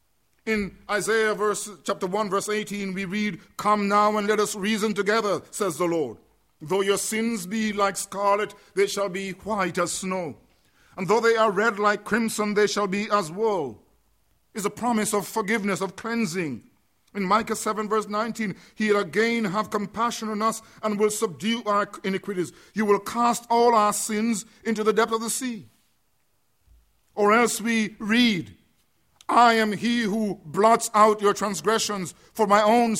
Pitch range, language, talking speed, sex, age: 200-225 Hz, English, 170 wpm, male, 50-69